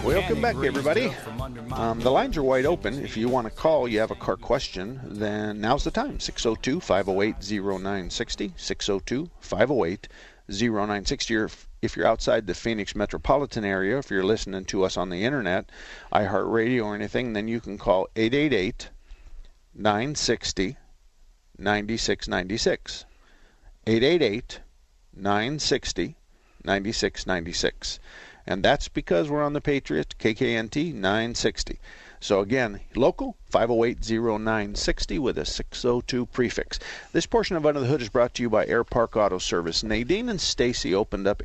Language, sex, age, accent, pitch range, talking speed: English, male, 50-69, American, 100-125 Hz, 135 wpm